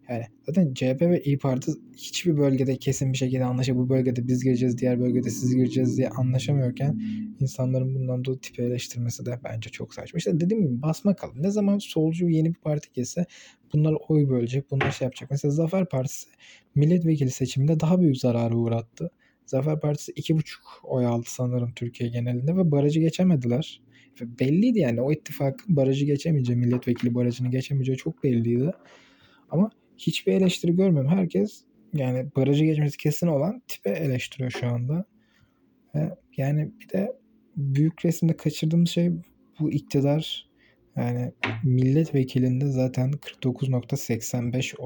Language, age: Turkish, 20-39